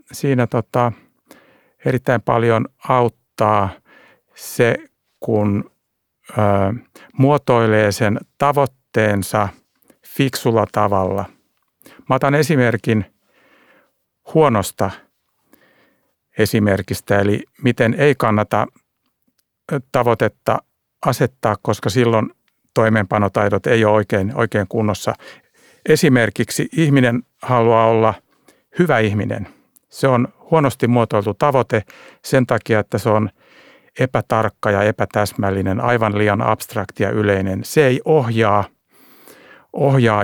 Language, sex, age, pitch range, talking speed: Finnish, male, 60-79, 105-125 Hz, 85 wpm